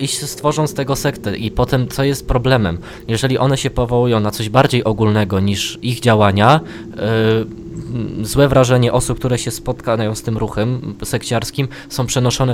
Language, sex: Polish, male